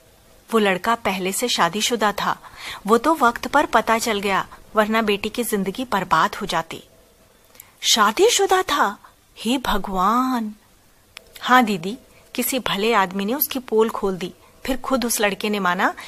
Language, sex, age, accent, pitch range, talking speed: Hindi, female, 40-59, native, 195-245 Hz, 150 wpm